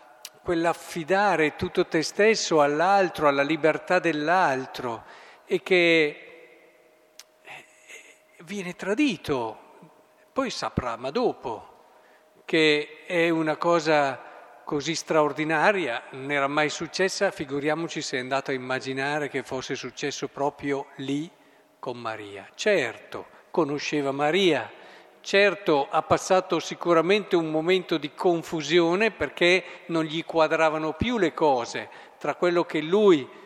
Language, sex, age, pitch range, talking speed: Italian, male, 50-69, 145-180 Hz, 110 wpm